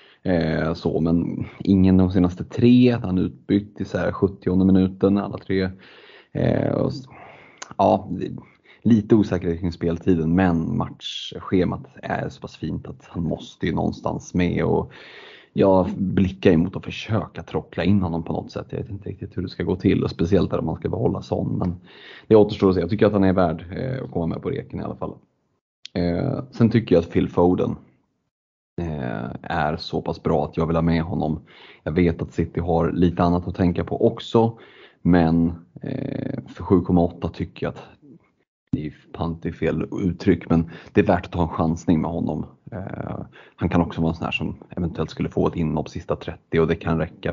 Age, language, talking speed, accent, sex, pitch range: 30-49, Swedish, 190 wpm, native, male, 85-100 Hz